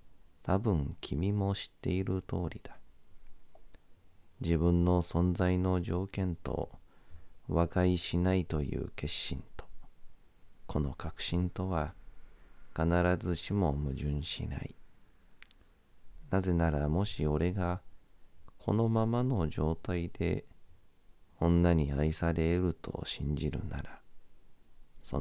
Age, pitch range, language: 40-59, 80-95 Hz, Japanese